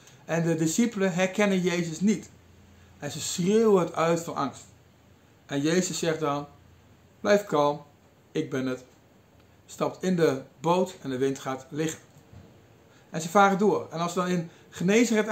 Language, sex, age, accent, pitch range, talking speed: Dutch, male, 50-69, Dutch, 145-205 Hz, 160 wpm